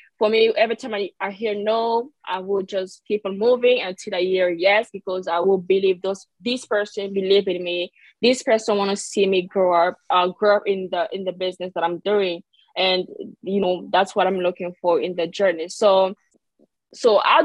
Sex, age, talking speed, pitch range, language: female, 20-39, 210 wpm, 185-220 Hz, English